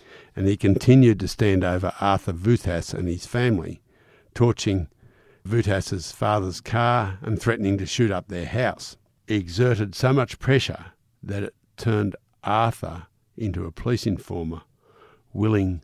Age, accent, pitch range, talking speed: 60-79, Australian, 95-115 Hz, 135 wpm